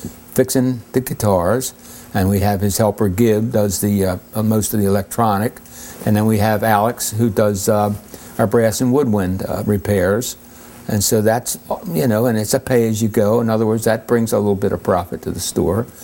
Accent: American